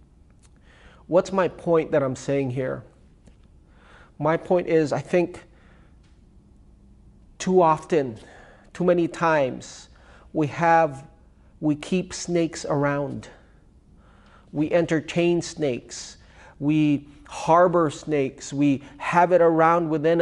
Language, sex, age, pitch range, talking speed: English, male, 40-59, 140-170 Hz, 100 wpm